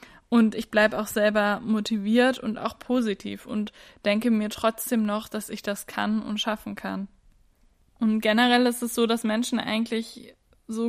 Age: 10-29